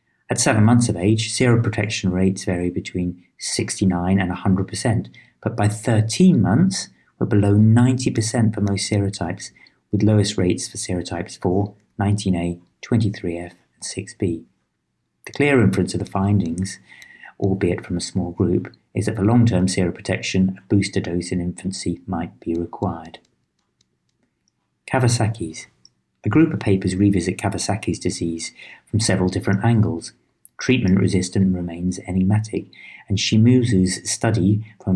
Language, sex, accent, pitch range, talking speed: English, male, British, 90-110 Hz, 130 wpm